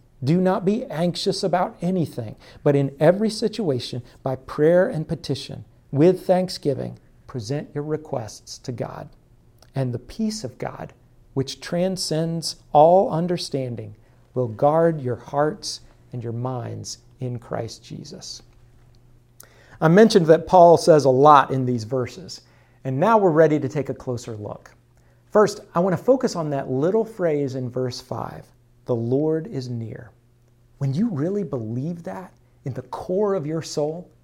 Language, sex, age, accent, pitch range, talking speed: English, male, 50-69, American, 125-185 Hz, 150 wpm